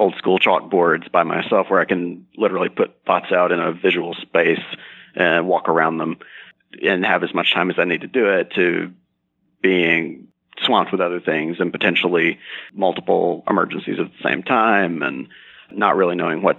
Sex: male